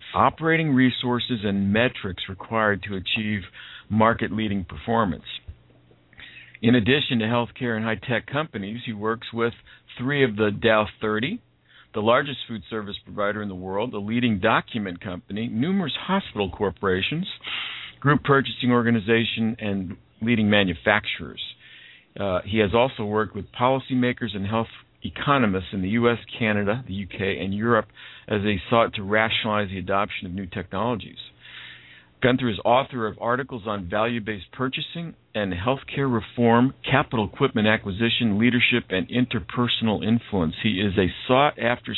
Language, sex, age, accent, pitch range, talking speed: English, male, 50-69, American, 100-120 Hz, 135 wpm